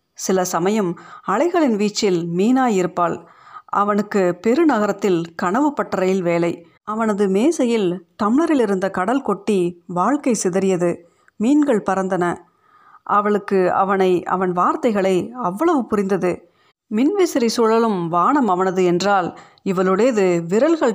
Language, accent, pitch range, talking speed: Tamil, native, 180-245 Hz, 95 wpm